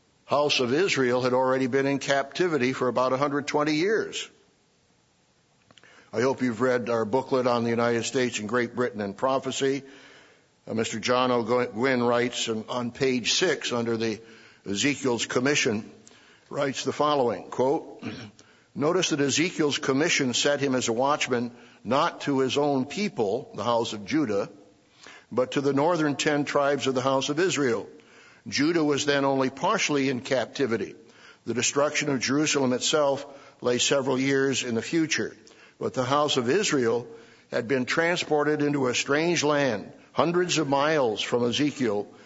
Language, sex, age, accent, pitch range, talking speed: English, male, 60-79, American, 125-145 Hz, 155 wpm